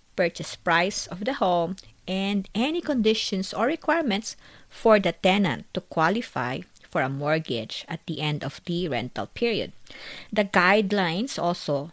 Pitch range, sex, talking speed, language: 160-230 Hz, female, 140 wpm, English